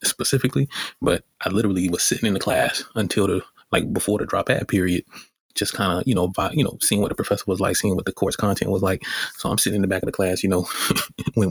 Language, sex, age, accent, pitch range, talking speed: English, male, 30-49, American, 95-105 Hz, 260 wpm